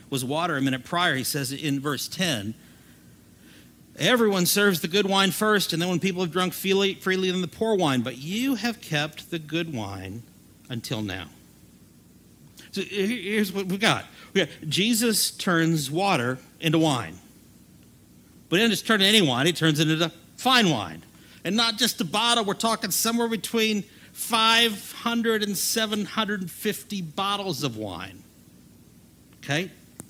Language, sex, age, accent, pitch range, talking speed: English, male, 50-69, American, 135-210 Hz, 150 wpm